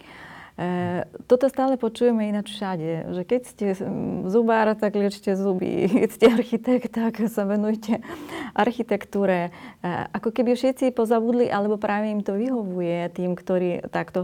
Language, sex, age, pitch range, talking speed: Slovak, female, 30-49, 185-225 Hz, 140 wpm